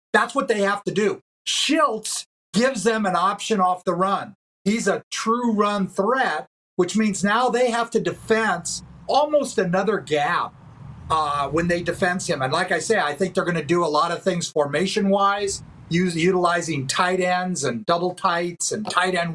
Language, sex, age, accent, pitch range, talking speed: English, male, 50-69, American, 175-220 Hz, 180 wpm